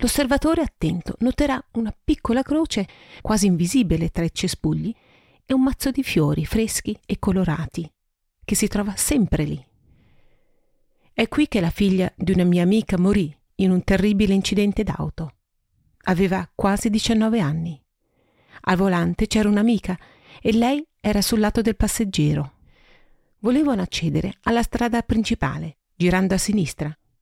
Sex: female